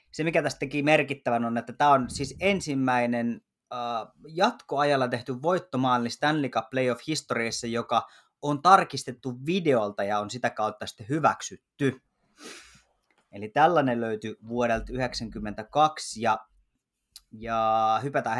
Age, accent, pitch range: 30-49, native, 120-150 Hz